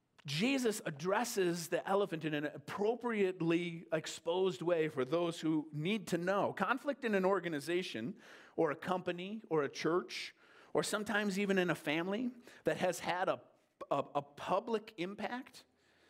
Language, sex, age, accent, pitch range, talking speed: English, male, 40-59, American, 160-205 Hz, 145 wpm